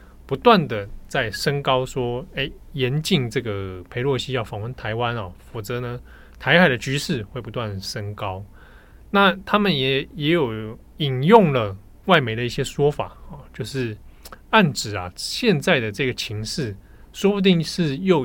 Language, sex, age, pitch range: Chinese, male, 20-39, 105-160 Hz